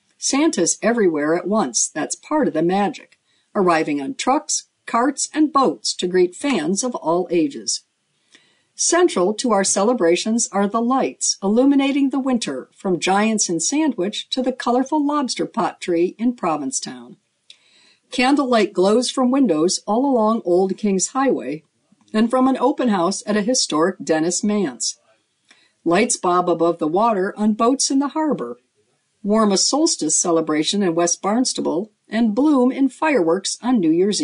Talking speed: 150 wpm